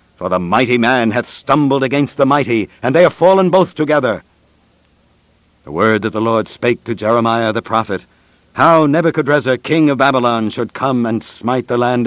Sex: male